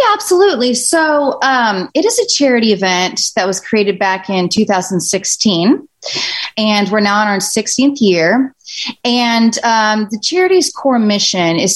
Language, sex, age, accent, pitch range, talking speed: English, female, 30-49, American, 180-220 Hz, 150 wpm